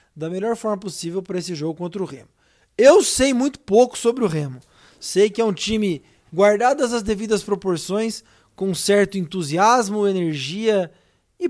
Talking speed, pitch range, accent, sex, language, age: 160 wpm, 165-220 Hz, Brazilian, male, Portuguese, 20-39